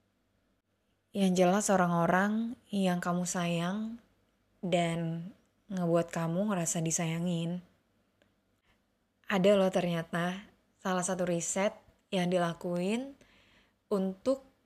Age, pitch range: 20-39, 170-205 Hz